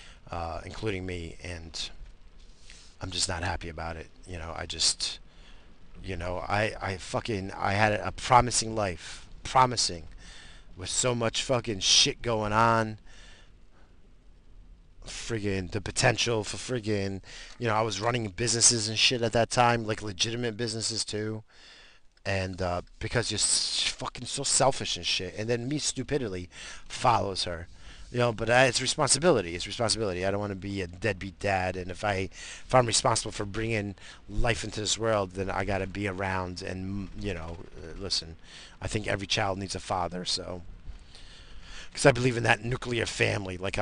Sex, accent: male, American